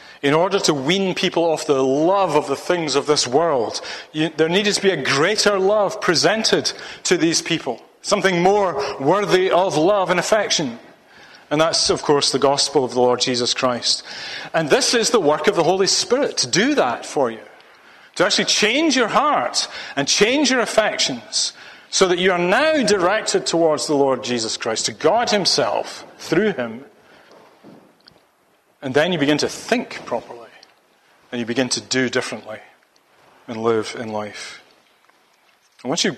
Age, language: 40-59, English